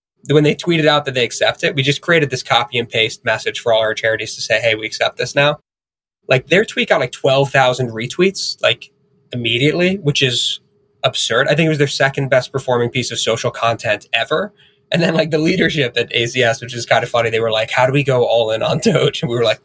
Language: English